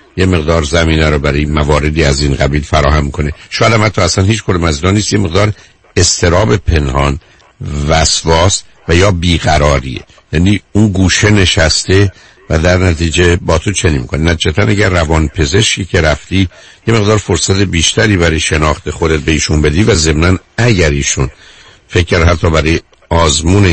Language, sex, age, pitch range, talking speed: Persian, male, 60-79, 80-95 Hz, 150 wpm